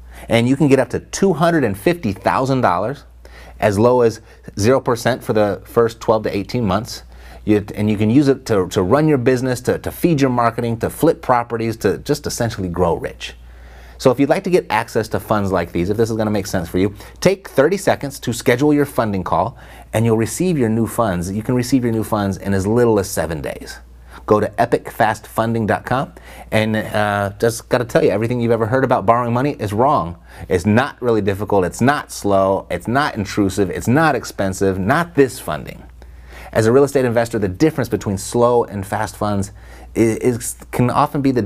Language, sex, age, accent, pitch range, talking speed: English, male, 30-49, American, 95-125 Hz, 205 wpm